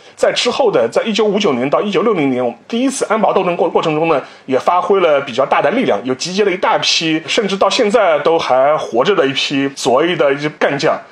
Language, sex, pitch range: Chinese, male, 145-235 Hz